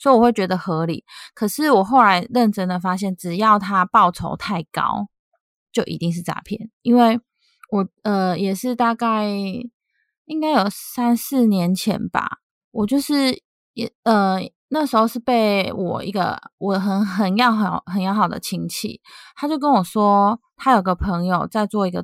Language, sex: Chinese, female